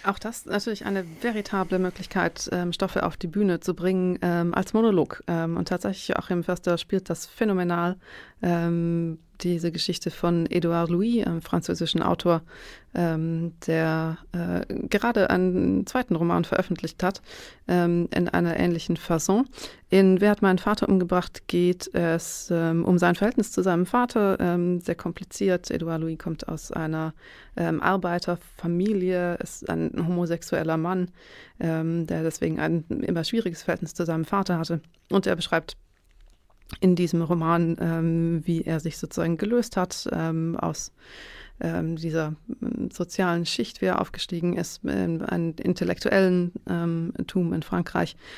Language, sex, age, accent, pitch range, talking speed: German, female, 30-49, German, 165-185 Hz, 140 wpm